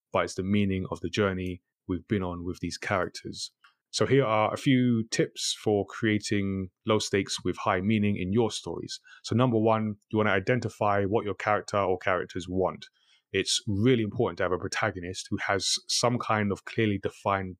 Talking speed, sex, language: 190 wpm, male, English